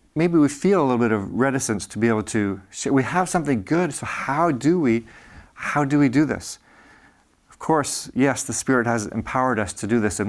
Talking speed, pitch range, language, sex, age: 215 wpm, 105-135 Hz, English, male, 40-59